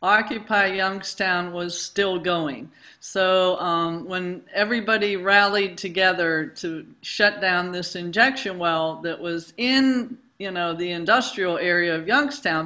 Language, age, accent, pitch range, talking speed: English, 50-69, American, 170-210 Hz, 130 wpm